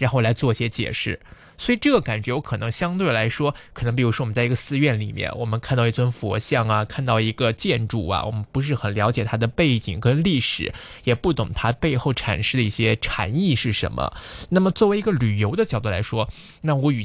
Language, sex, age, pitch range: Chinese, male, 20-39, 110-145 Hz